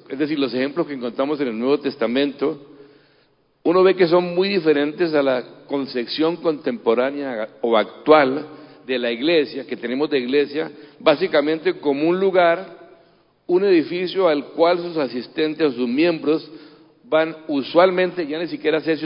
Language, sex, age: Spanish, male, 60-79